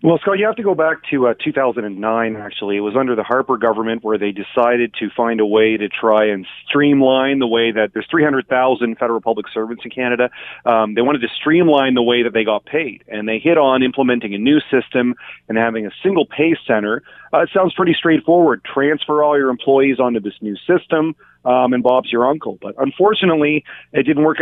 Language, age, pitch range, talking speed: English, 40-59, 115-150 Hz, 210 wpm